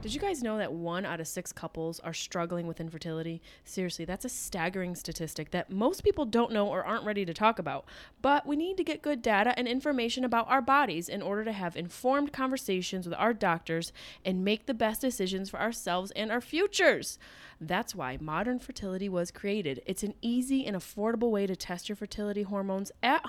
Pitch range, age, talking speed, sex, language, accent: 170-245 Hz, 20-39, 205 wpm, female, English, American